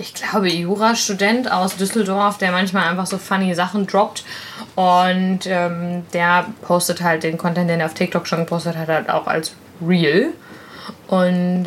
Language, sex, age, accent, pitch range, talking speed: German, female, 20-39, German, 180-205 Hz, 160 wpm